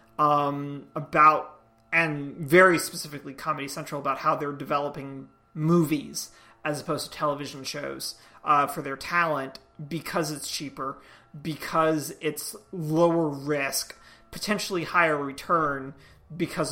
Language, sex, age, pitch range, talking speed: English, male, 30-49, 140-175 Hz, 115 wpm